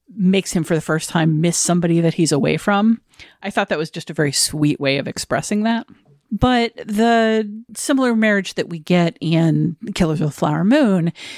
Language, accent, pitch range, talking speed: English, American, 160-210 Hz, 195 wpm